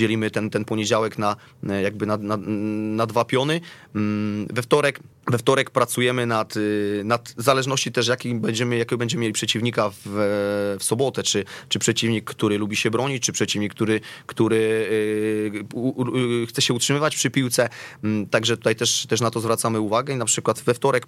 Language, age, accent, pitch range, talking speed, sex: Polish, 30-49, native, 110-125 Hz, 150 wpm, male